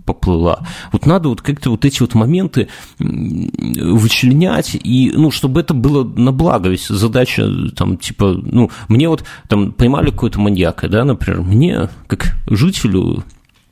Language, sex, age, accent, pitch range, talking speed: Russian, male, 40-59, native, 95-125 Hz, 145 wpm